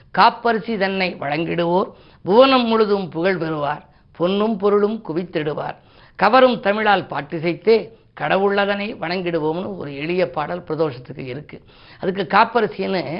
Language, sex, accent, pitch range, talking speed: Tamil, female, native, 160-200 Hz, 100 wpm